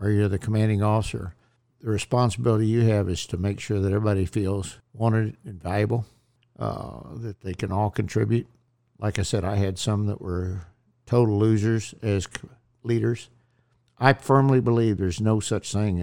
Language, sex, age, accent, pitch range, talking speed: English, male, 60-79, American, 100-120 Hz, 165 wpm